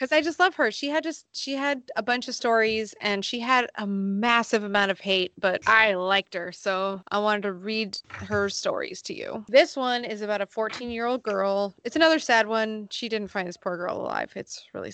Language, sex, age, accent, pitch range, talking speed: English, female, 20-39, American, 185-230 Hz, 230 wpm